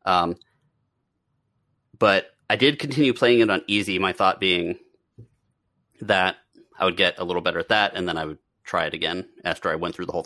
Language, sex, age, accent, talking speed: English, male, 30-49, American, 200 wpm